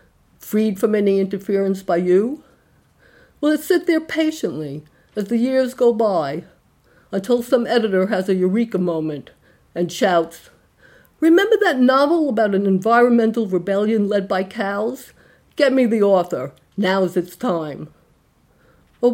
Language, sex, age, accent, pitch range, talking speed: English, female, 50-69, American, 175-230 Hz, 140 wpm